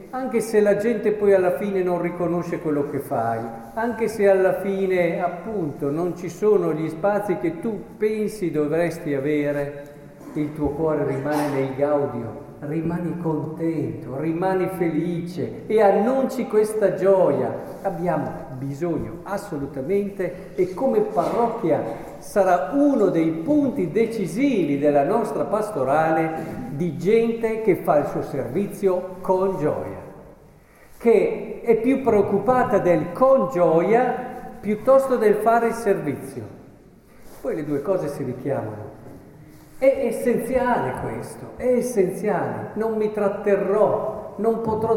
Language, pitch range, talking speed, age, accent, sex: Italian, 150-210 Hz, 125 wpm, 50-69, native, male